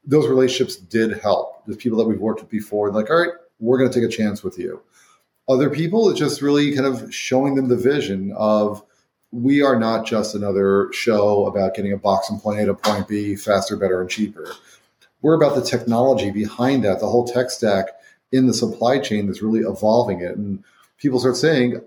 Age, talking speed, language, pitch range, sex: 40-59, 210 wpm, English, 105-130 Hz, male